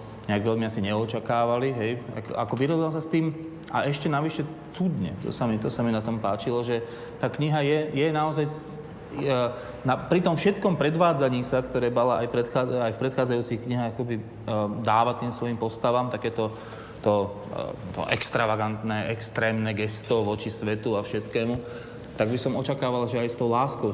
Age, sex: 30-49, male